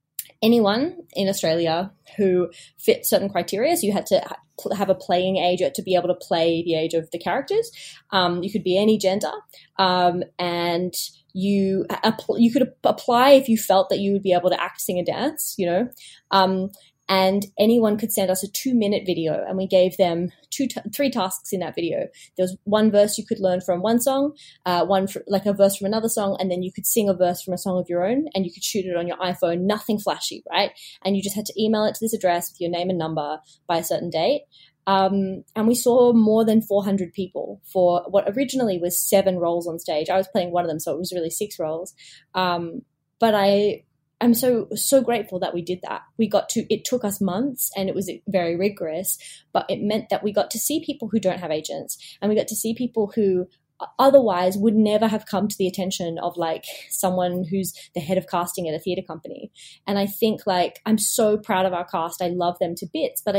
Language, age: English, 20-39